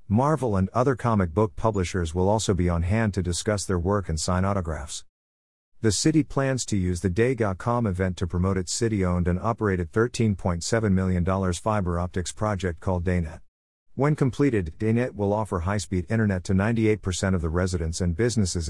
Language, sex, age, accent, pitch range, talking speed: English, male, 50-69, American, 90-110 Hz, 170 wpm